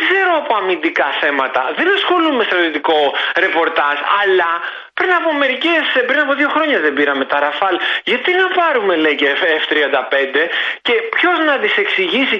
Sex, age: male, 30-49